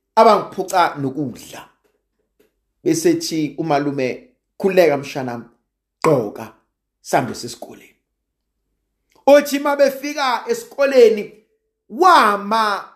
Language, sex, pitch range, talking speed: English, male, 190-300 Hz, 65 wpm